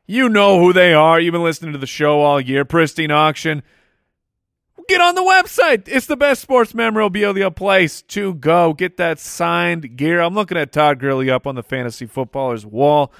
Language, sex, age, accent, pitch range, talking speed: English, male, 30-49, American, 135-175 Hz, 190 wpm